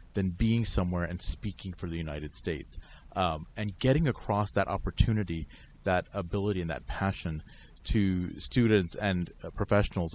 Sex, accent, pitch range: male, American, 85-110 Hz